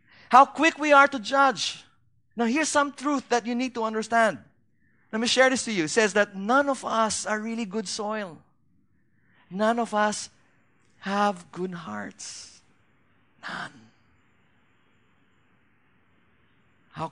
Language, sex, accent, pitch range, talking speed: English, male, Filipino, 140-215 Hz, 135 wpm